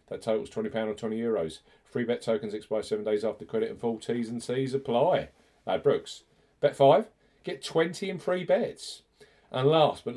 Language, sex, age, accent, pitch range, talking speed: English, male, 40-59, British, 110-140 Hz, 190 wpm